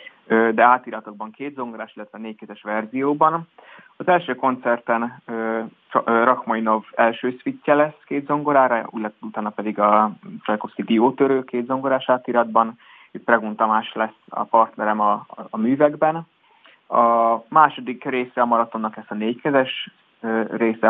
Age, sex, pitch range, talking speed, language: 20-39, male, 110-130 Hz, 125 wpm, Hungarian